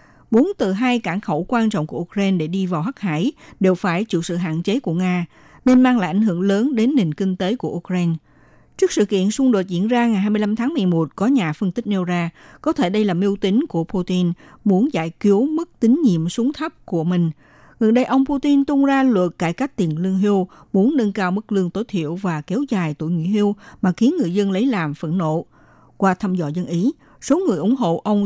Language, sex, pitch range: Vietnamese, female, 175-245 Hz